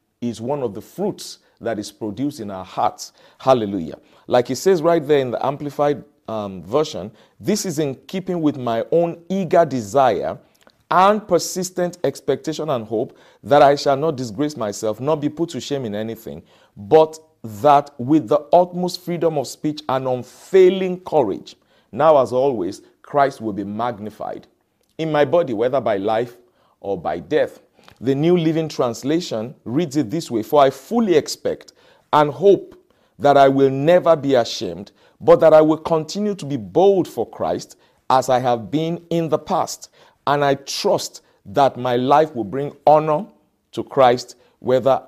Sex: male